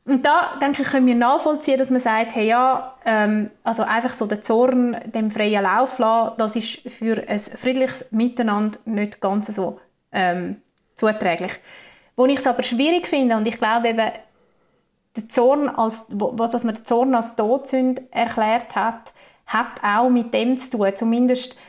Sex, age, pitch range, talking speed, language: female, 30-49, 220-255 Hz, 170 wpm, German